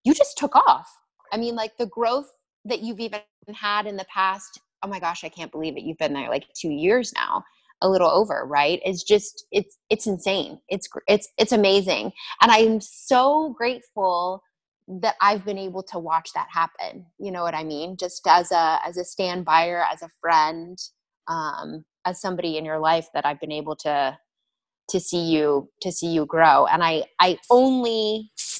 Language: English